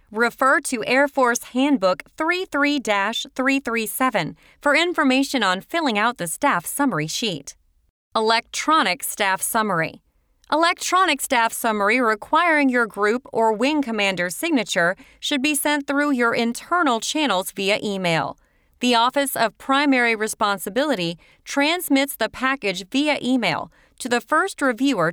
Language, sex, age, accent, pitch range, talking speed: English, female, 30-49, American, 200-280 Hz, 120 wpm